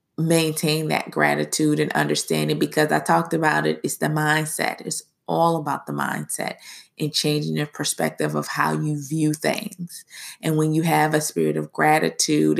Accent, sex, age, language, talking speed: American, female, 20-39, English, 165 wpm